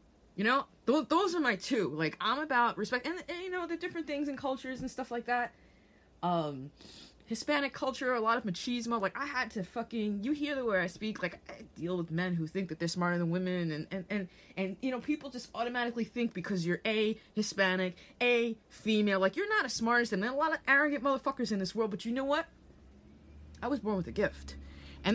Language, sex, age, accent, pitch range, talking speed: English, female, 20-39, American, 180-270 Hz, 230 wpm